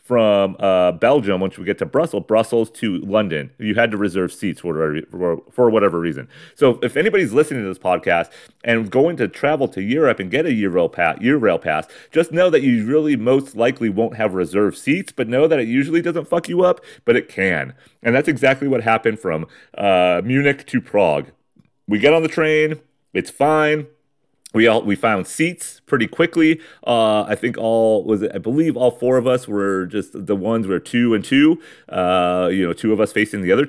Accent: American